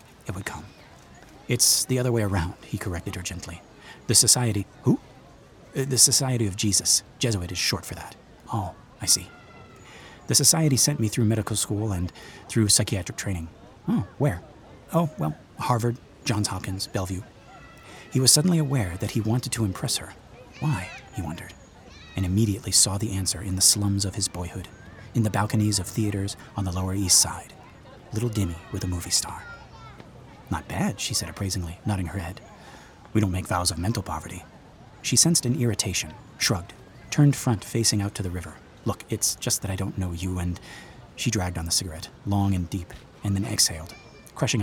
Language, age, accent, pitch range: English, 30-49, American, 95-120 Hz